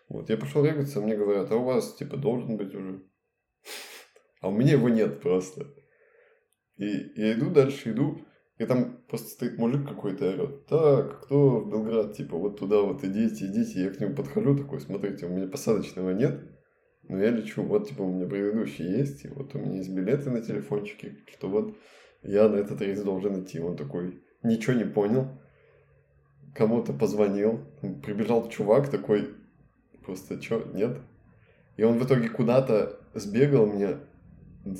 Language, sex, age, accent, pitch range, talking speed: Russian, male, 20-39, native, 95-130 Hz, 165 wpm